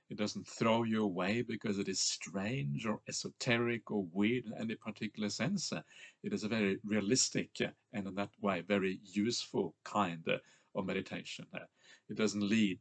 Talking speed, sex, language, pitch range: 160 wpm, male, English, 100-120 Hz